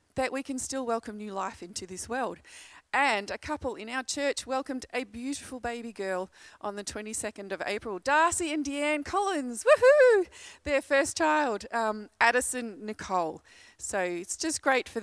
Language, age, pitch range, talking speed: English, 30-49, 205-295 Hz, 170 wpm